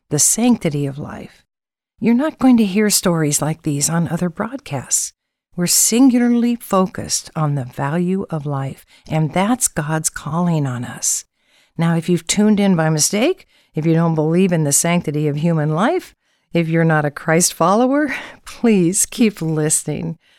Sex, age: female, 60-79